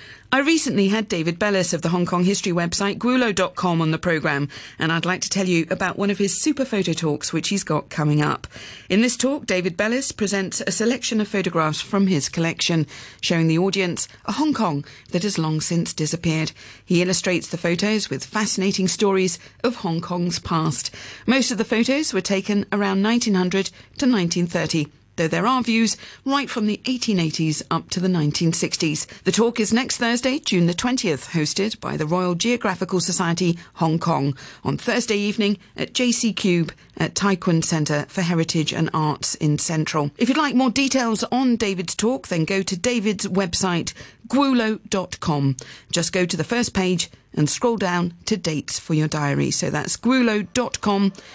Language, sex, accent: English, female, British